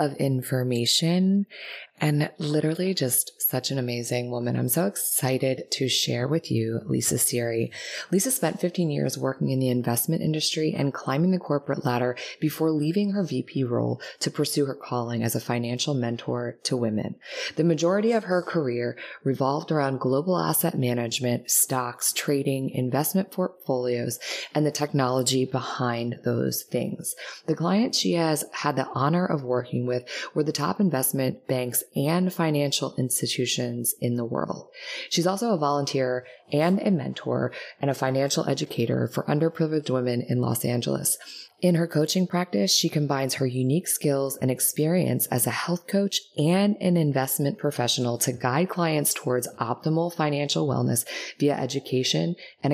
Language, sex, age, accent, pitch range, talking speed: English, female, 20-39, American, 125-160 Hz, 155 wpm